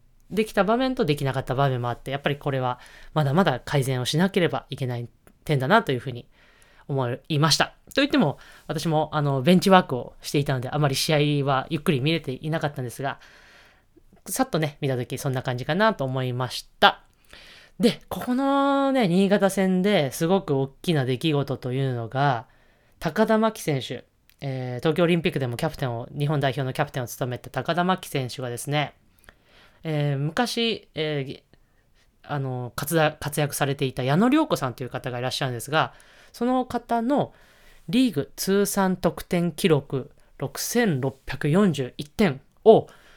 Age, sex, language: 20-39, female, Japanese